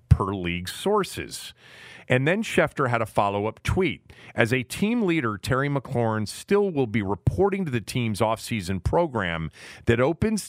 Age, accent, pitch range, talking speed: 40-59, American, 100-130 Hz, 160 wpm